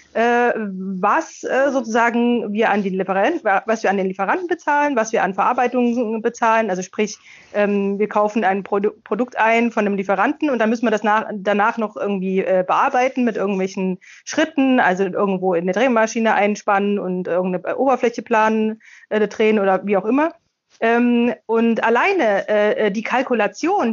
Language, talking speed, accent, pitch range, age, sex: German, 170 wpm, German, 205-255 Hz, 30-49, female